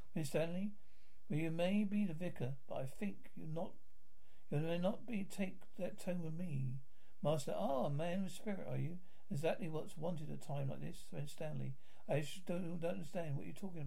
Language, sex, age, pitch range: English, male, 60-79, 140-180 Hz